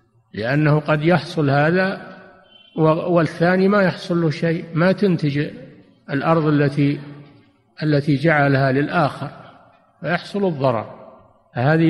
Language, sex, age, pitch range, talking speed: Arabic, male, 50-69, 130-175 Hz, 95 wpm